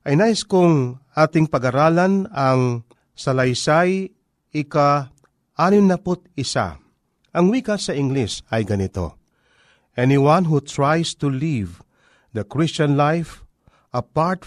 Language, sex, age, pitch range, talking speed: Filipino, male, 40-59, 125-170 Hz, 100 wpm